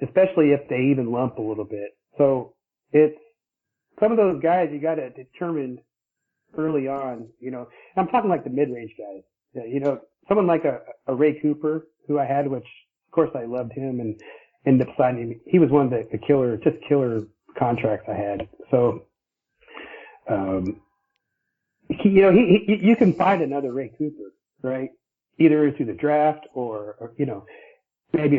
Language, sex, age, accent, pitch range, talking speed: English, male, 40-59, American, 125-160 Hz, 180 wpm